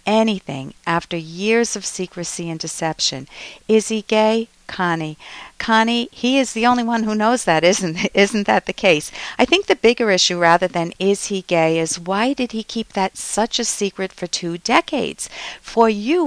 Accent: American